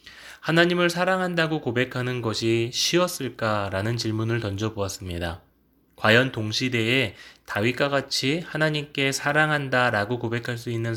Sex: male